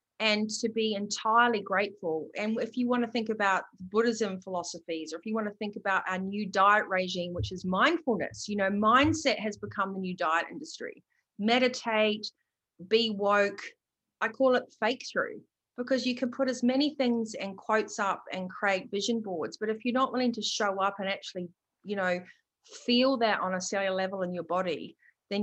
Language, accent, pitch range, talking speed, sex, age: English, Australian, 190-235 Hz, 190 wpm, female, 30-49